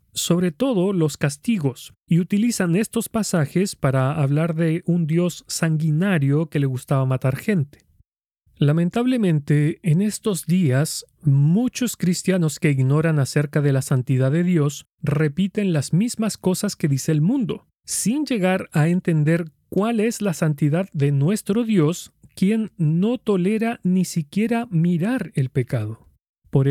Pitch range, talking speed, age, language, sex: 150-195 Hz, 135 wpm, 40-59, Spanish, male